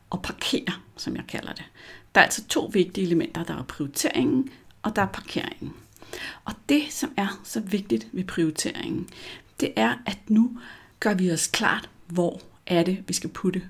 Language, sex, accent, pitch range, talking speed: Danish, female, native, 170-235 Hz, 180 wpm